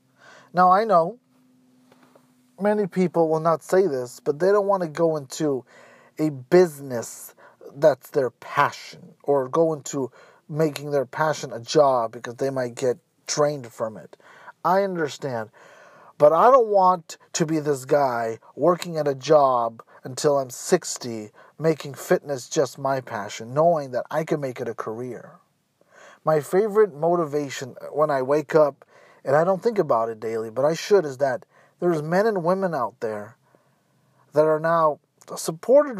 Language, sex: English, male